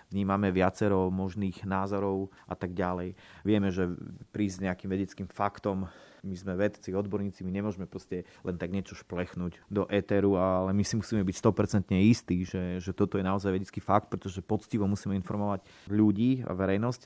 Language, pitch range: Slovak, 95-110 Hz